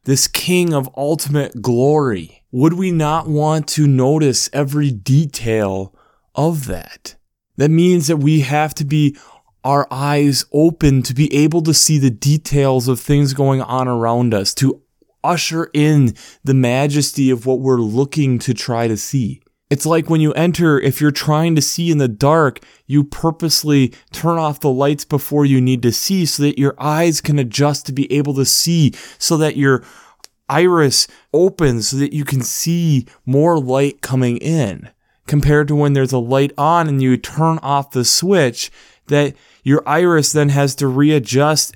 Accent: American